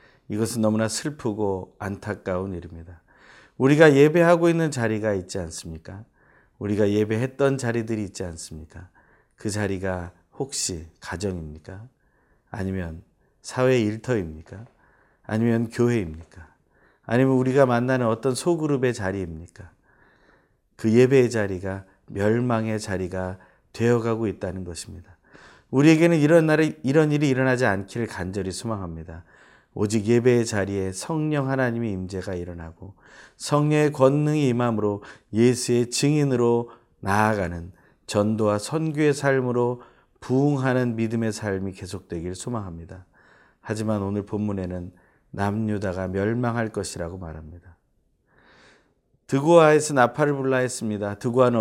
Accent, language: native, Korean